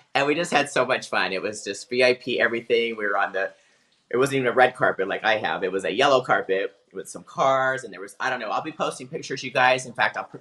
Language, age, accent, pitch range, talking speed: English, 30-49, American, 120-140 Hz, 275 wpm